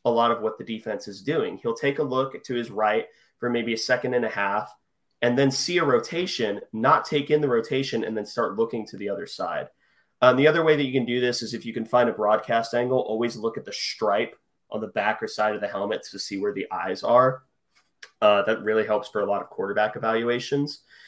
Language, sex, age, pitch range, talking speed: English, male, 30-49, 115-150 Hz, 245 wpm